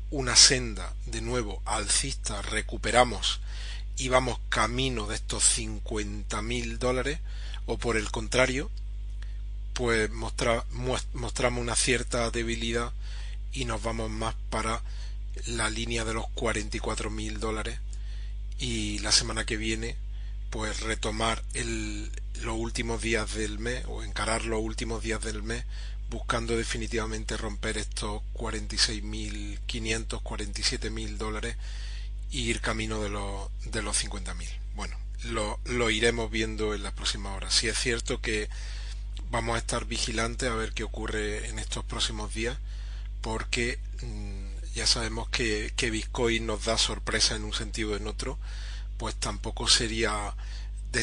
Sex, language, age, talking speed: male, Spanish, 40-59, 135 wpm